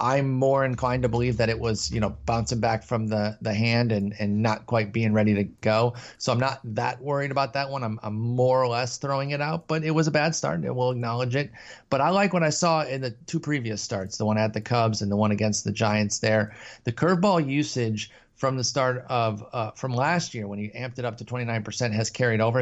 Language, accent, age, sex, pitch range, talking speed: English, American, 30-49, male, 110-135 Hz, 250 wpm